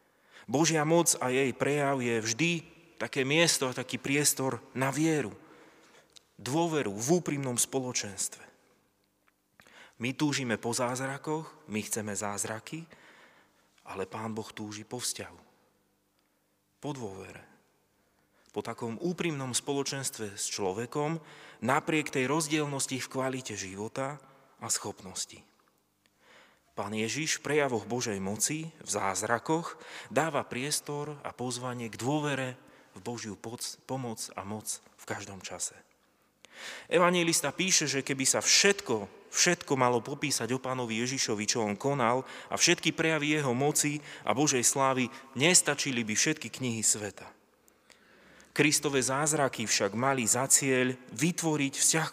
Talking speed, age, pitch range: 120 wpm, 30-49, 115-150 Hz